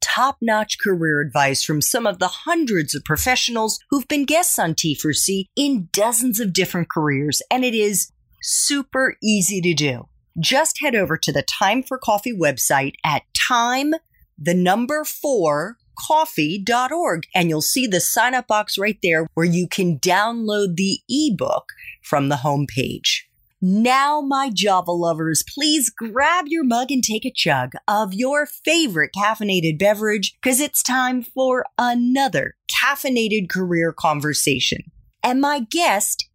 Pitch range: 170-265 Hz